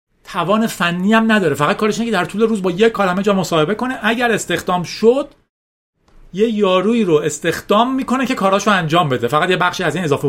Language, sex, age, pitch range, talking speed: Persian, male, 40-59, 165-225 Hz, 200 wpm